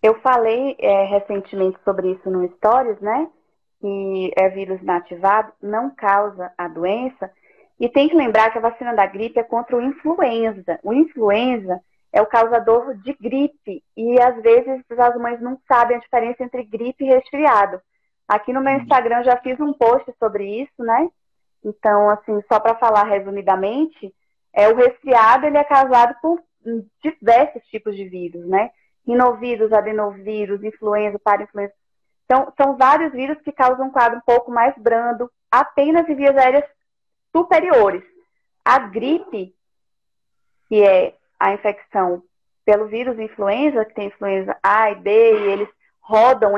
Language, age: Portuguese, 20-39